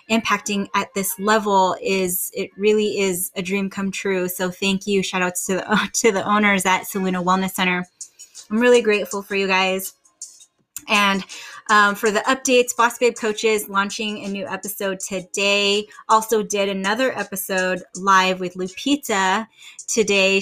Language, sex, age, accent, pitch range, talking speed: English, female, 10-29, American, 190-220 Hz, 155 wpm